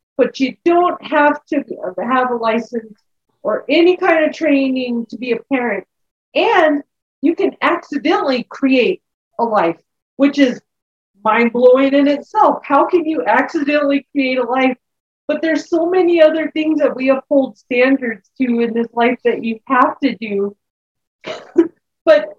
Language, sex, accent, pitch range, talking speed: English, female, American, 220-285 Hz, 150 wpm